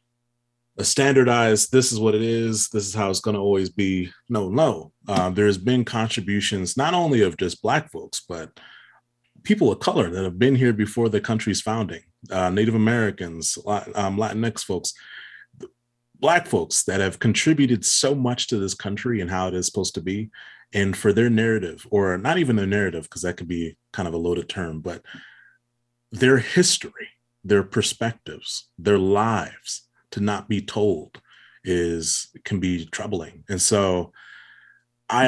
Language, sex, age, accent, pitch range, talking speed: English, male, 30-49, American, 90-115 Hz, 165 wpm